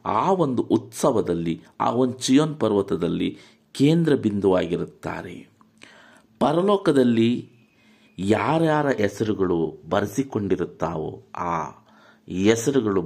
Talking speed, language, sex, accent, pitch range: 70 wpm, Kannada, male, native, 90-135 Hz